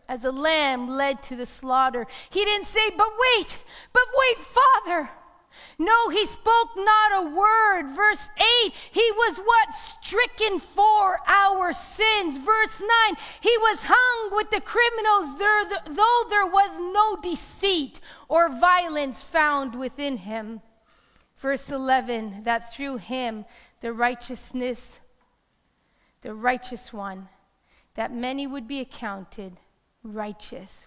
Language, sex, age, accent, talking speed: English, female, 40-59, American, 125 wpm